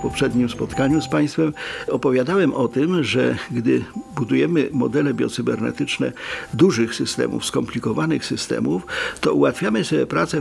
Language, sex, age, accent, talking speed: Polish, male, 50-69, native, 120 wpm